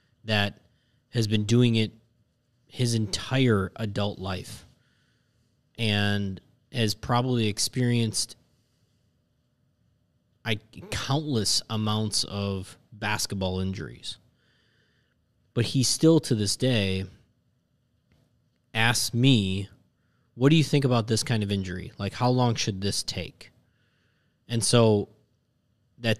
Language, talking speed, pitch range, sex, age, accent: English, 100 wpm, 100-120 Hz, male, 20-39, American